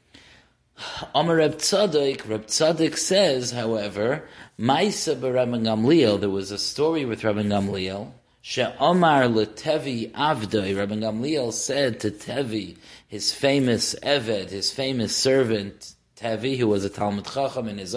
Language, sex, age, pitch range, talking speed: English, male, 30-49, 105-140 Hz, 115 wpm